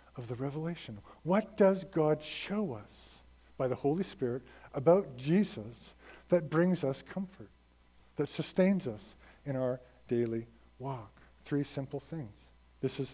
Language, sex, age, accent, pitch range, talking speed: English, male, 50-69, American, 100-145 Hz, 135 wpm